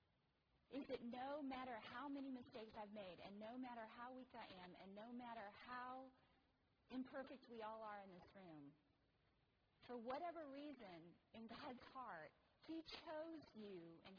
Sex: female